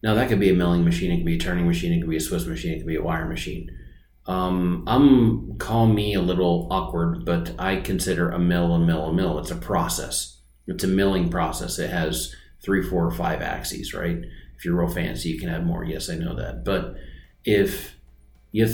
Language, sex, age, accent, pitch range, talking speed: English, male, 30-49, American, 85-95 Hz, 230 wpm